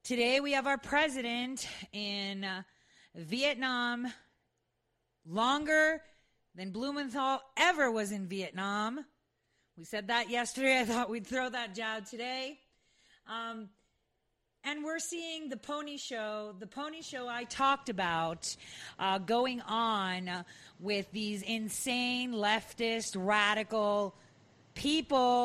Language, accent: English, American